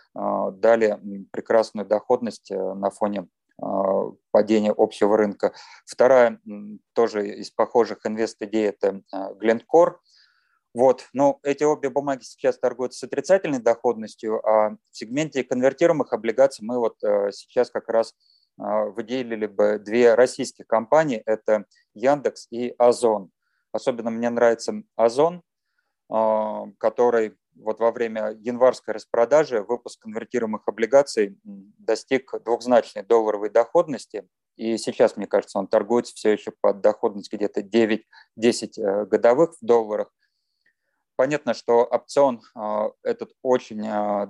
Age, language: 30-49, Russian